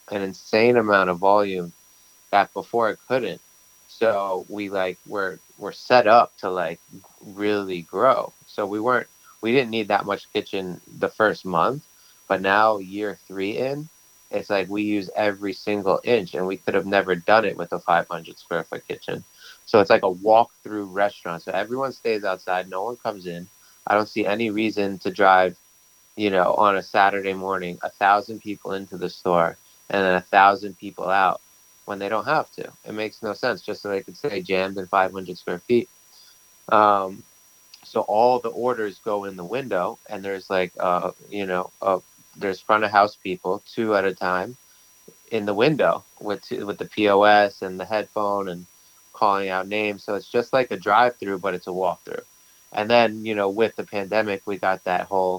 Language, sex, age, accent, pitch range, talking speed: English, male, 30-49, American, 95-105 Hz, 195 wpm